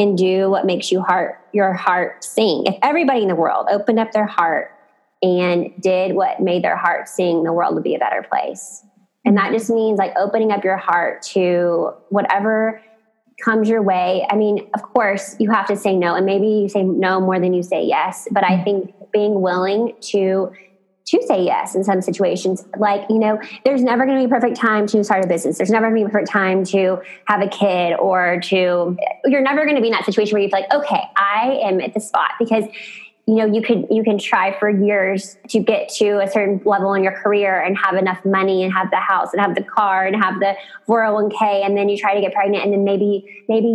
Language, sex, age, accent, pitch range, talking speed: English, female, 20-39, American, 190-220 Hz, 235 wpm